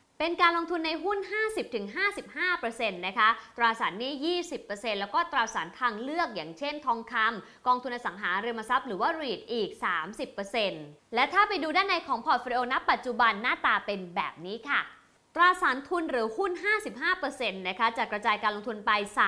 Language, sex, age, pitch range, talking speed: English, female, 20-39, 215-300 Hz, 35 wpm